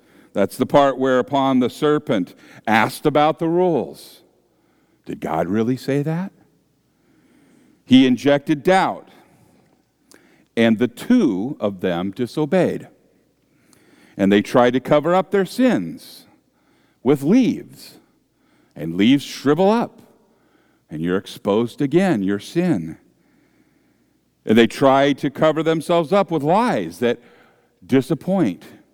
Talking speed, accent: 115 wpm, American